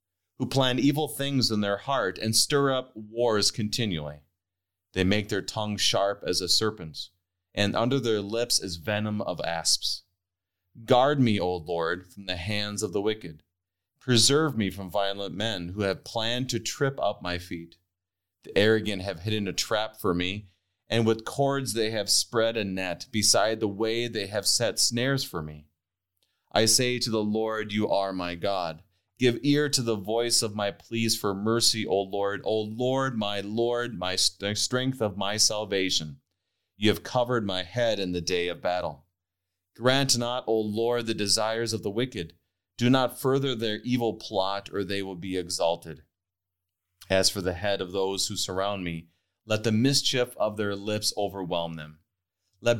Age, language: 30-49, English